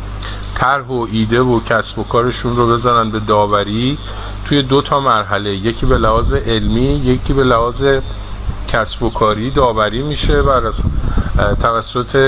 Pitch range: 105-125 Hz